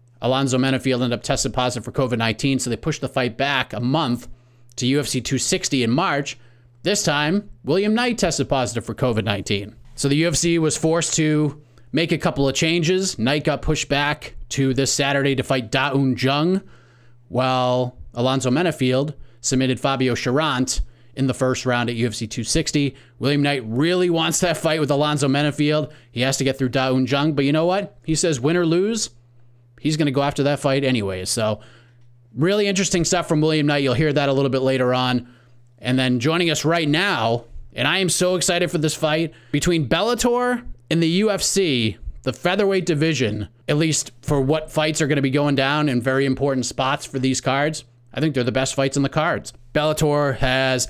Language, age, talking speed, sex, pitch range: English, 30-49, 190 wpm, male, 125-155 Hz